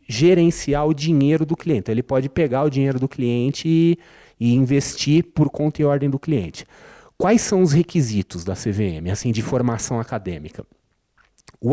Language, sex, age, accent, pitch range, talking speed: Portuguese, male, 30-49, Brazilian, 110-140 Hz, 165 wpm